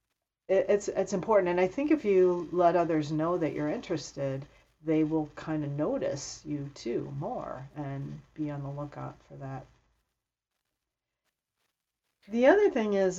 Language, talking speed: English, 150 wpm